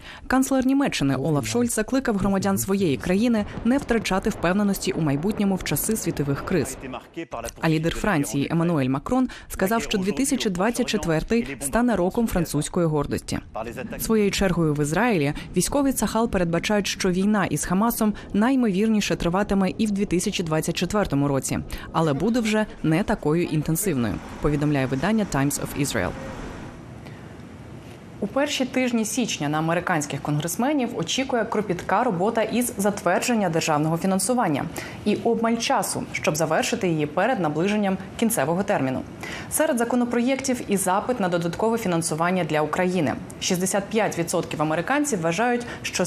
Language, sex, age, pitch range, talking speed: Ukrainian, female, 20-39, 160-230 Hz, 120 wpm